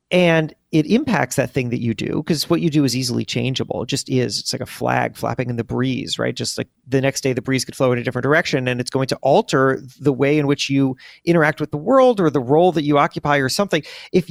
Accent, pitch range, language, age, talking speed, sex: American, 125-160 Hz, English, 30-49, 265 wpm, male